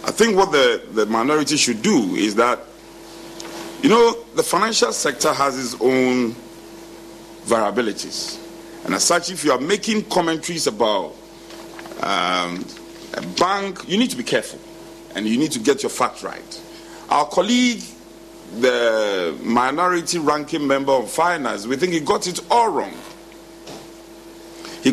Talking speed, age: 145 wpm, 50-69